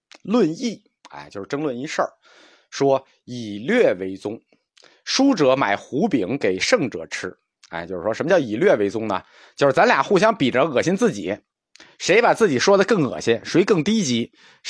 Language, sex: Chinese, male